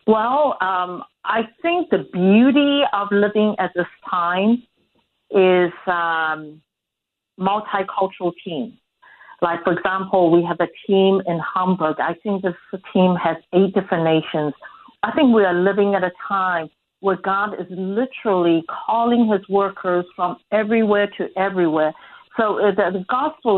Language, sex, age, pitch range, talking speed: English, female, 50-69, 175-205 Hz, 140 wpm